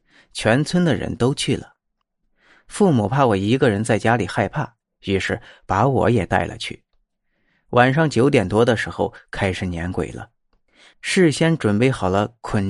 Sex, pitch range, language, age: male, 100-130 Hz, Chinese, 30-49